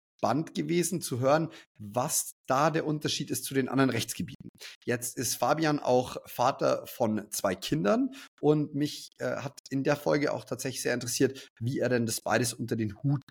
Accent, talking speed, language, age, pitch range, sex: German, 180 wpm, German, 30-49, 120-155 Hz, male